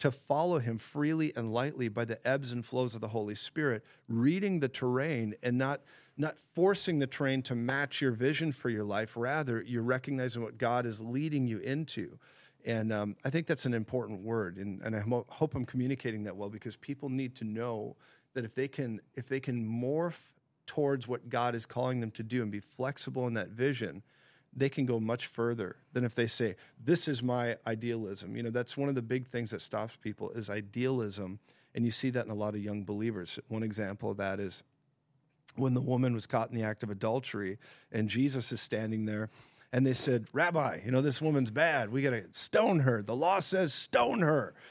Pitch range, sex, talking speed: 115-140 Hz, male, 210 wpm